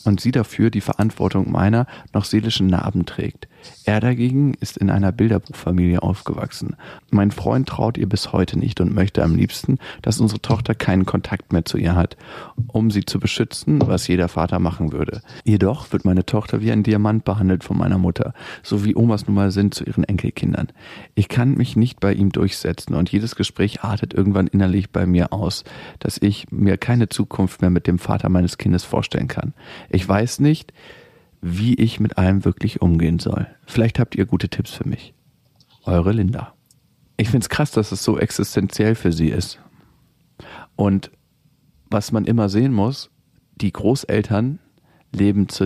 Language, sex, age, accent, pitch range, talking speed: German, male, 40-59, German, 95-115 Hz, 175 wpm